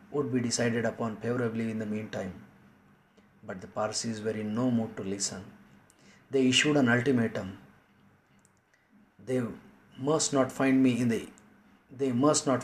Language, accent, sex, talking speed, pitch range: Marathi, native, male, 145 wpm, 110-130 Hz